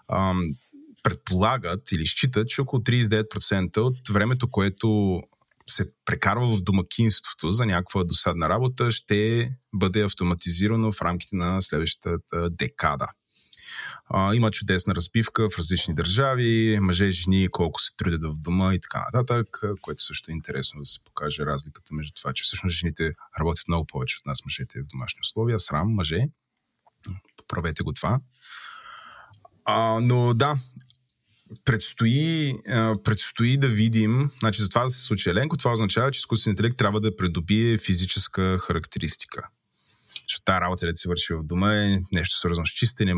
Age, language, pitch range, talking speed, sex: 30-49, Bulgarian, 90-115 Hz, 140 wpm, male